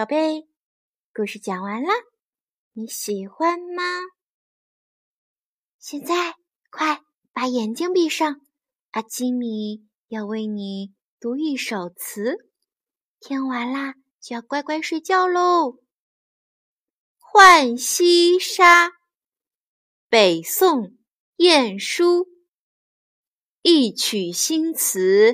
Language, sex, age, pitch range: Chinese, female, 20-39, 205-325 Hz